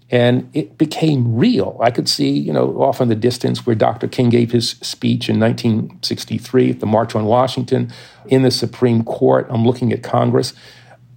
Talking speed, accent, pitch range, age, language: 175 wpm, American, 110-130 Hz, 50-69, English